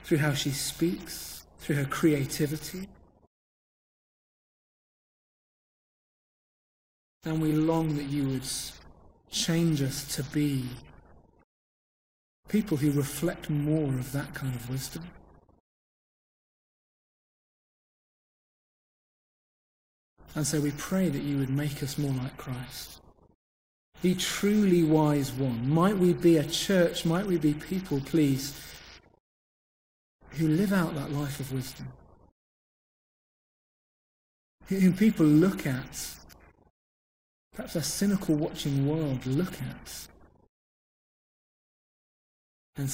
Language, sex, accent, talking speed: English, male, British, 100 wpm